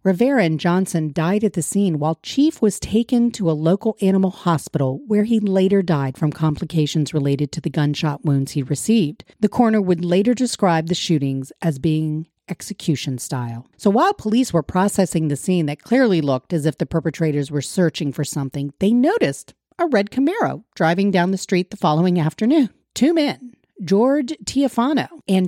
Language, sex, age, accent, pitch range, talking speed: English, female, 40-59, American, 155-225 Hz, 175 wpm